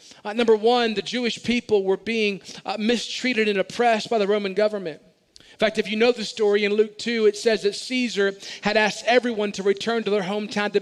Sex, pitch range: male, 205-255 Hz